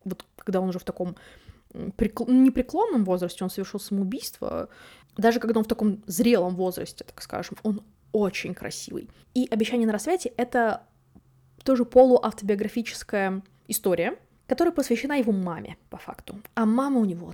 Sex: female